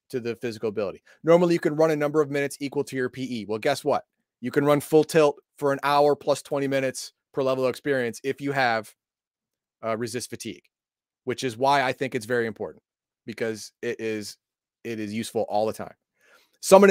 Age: 30-49